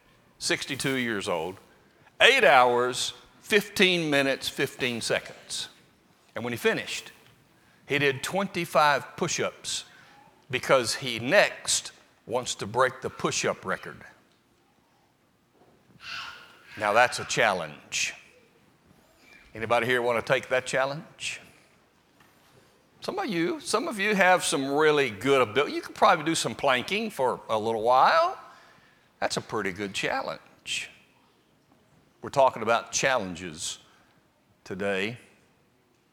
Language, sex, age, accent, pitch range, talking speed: English, male, 60-79, American, 125-170 Hz, 115 wpm